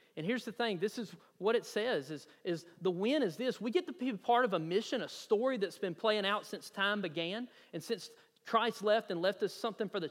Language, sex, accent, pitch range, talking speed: English, male, American, 200-255 Hz, 250 wpm